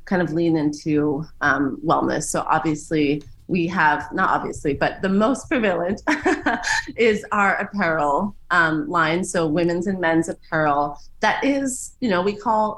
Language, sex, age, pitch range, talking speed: English, female, 30-49, 160-205 Hz, 150 wpm